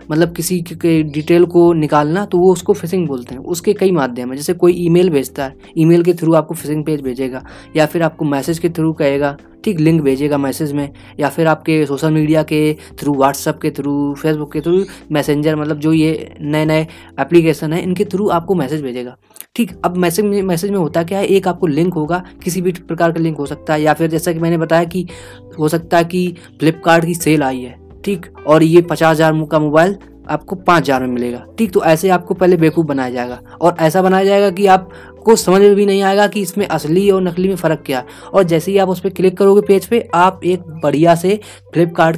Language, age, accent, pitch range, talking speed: Hindi, 20-39, native, 155-190 Hz, 220 wpm